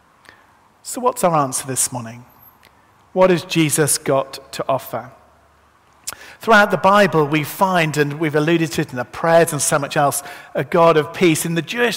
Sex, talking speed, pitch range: male, 180 wpm, 145-180 Hz